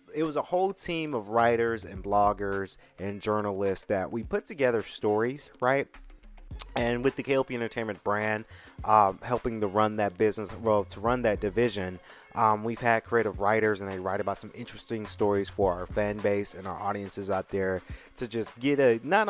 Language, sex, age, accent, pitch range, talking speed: English, male, 30-49, American, 100-125 Hz, 185 wpm